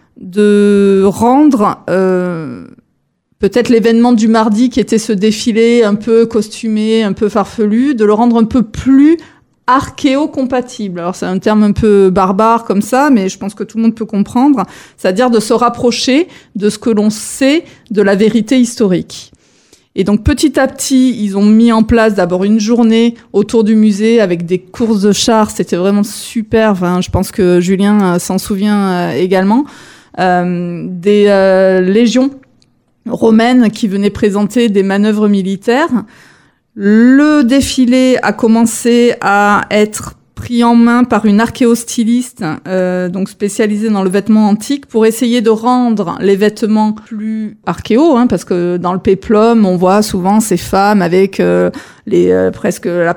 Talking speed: 165 wpm